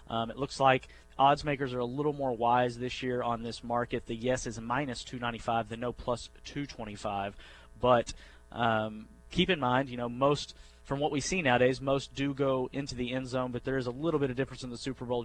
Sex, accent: male, American